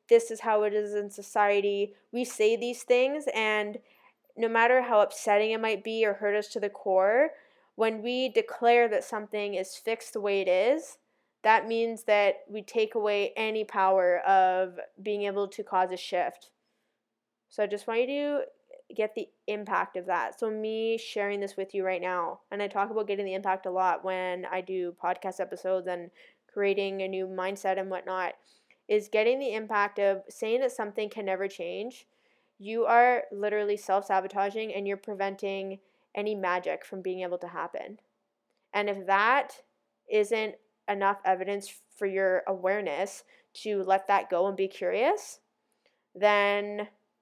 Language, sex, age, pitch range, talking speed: English, female, 10-29, 195-220 Hz, 170 wpm